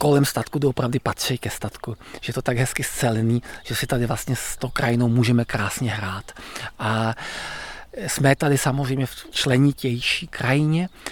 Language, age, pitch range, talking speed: Czech, 40-59, 120-140 Hz, 160 wpm